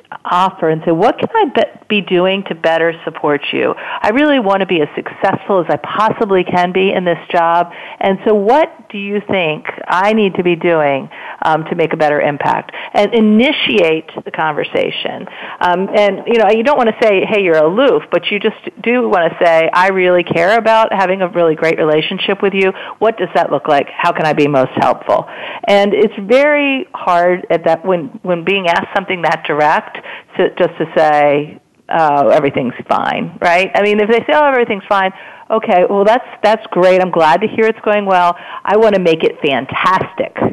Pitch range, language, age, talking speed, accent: 170-220 Hz, English, 50-69, 200 wpm, American